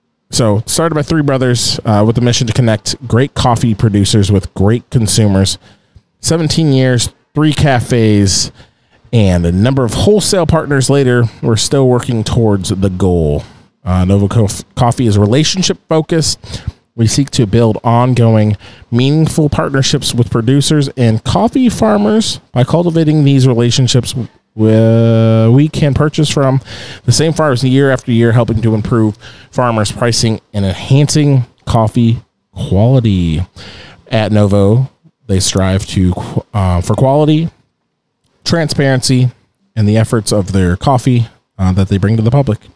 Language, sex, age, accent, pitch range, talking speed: English, male, 30-49, American, 105-135 Hz, 140 wpm